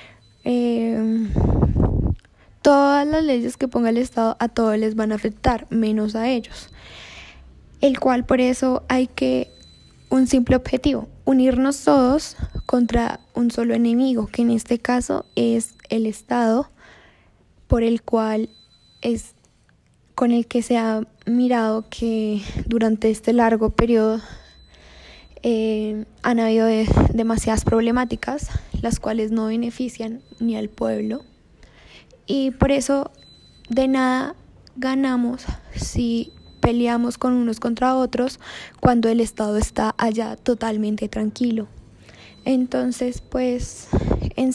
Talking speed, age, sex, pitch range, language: 120 wpm, 10-29, female, 215-250 Hz, Spanish